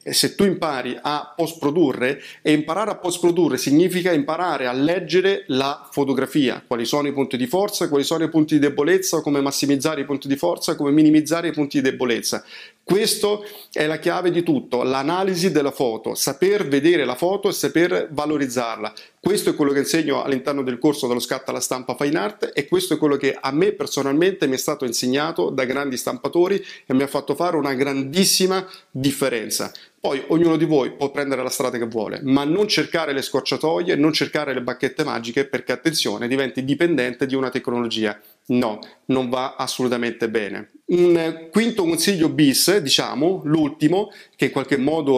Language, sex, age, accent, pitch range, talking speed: Italian, male, 40-59, native, 135-170 Hz, 180 wpm